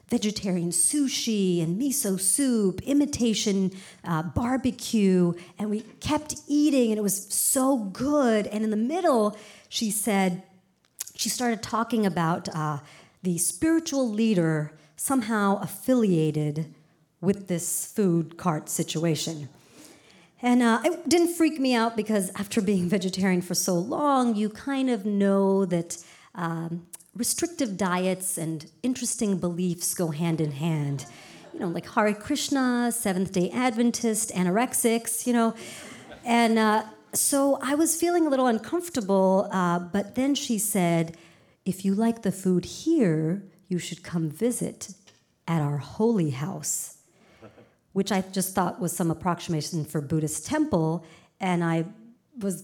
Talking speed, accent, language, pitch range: 135 wpm, American, English, 170-235 Hz